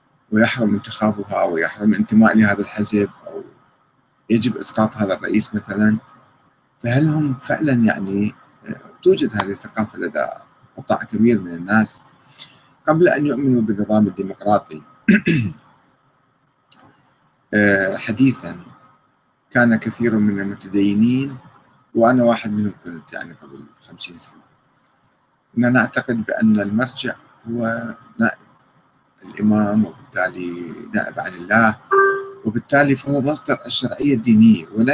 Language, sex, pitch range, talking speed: Arabic, male, 105-130 Hz, 100 wpm